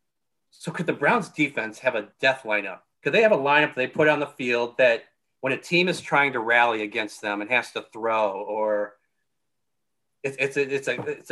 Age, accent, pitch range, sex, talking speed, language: 40-59, American, 115-145 Hz, male, 200 wpm, English